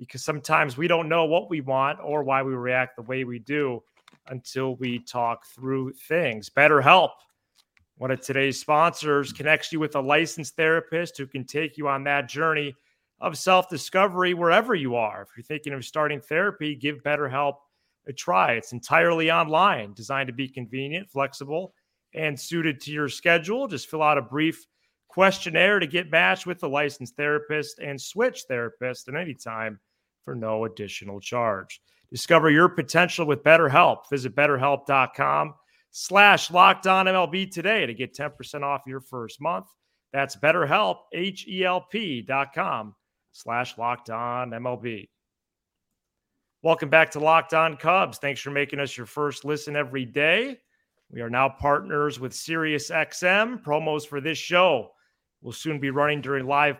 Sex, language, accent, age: male, English, American, 30-49